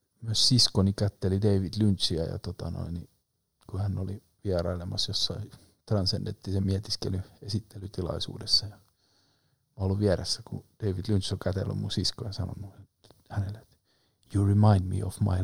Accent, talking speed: native, 130 wpm